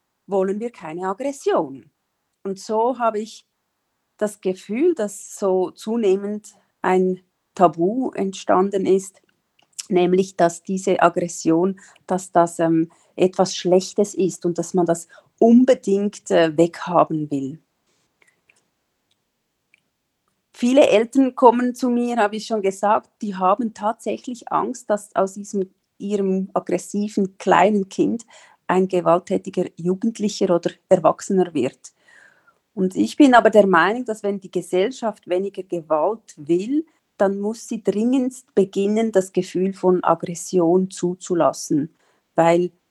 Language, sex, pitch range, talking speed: German, female, 180-210 Hz, 115 wpm